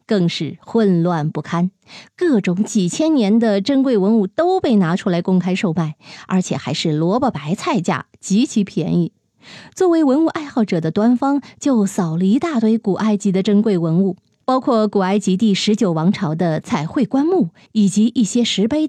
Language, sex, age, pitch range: Chinese, female, 20-39, 175-230 Hz